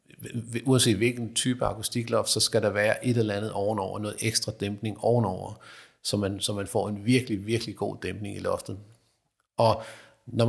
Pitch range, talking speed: 105-120 Hz, 170 wpm